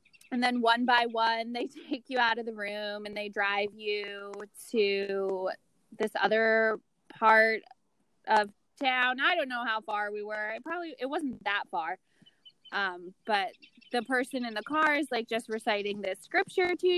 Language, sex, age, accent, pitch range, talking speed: English, female, 20-39, American, 210-290 Hz, 175 wpm